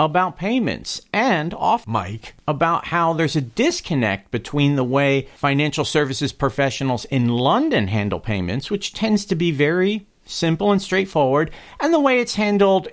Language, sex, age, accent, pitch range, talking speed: English, male, 50-69, American, 115-175 Hz, 155 wpm